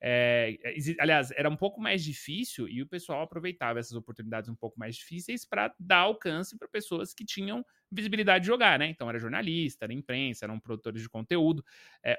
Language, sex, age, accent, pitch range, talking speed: Portuguese, male, 20-39, Brazilian, 135-200 Hz, 185 wpm